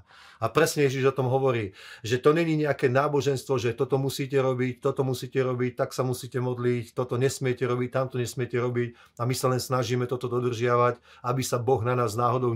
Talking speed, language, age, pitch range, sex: 195 wpm, Slovak, 30-49, 115-130 Hz, male